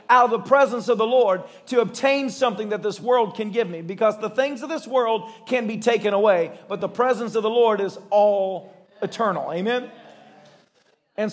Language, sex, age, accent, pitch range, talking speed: English, male, 40-59, American, 200-255 Hz, 195 wpm